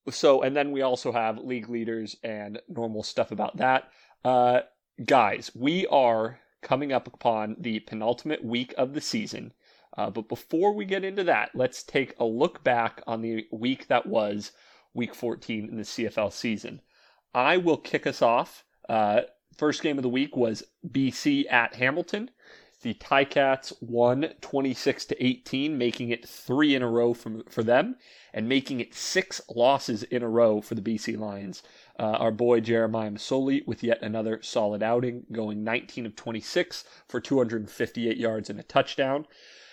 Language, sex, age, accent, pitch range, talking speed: English, male, 30-49, American, 115-140 Hz, 160 wpm